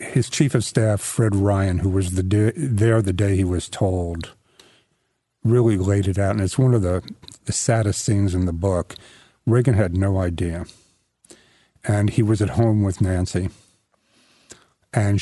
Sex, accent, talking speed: male, American, 160 wpm